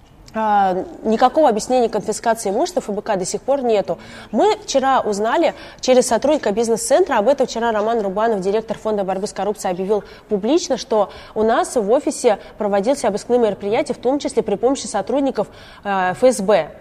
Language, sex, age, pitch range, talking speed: Russian, female, 20-39, 205-260 Hz, 150 wpm